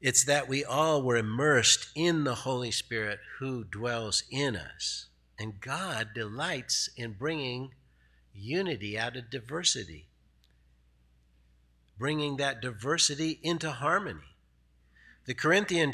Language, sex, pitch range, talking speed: English, male, 90-130 Hz, 115 wpm